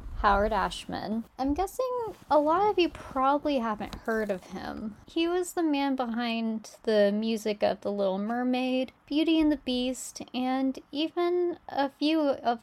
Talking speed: 155 wpm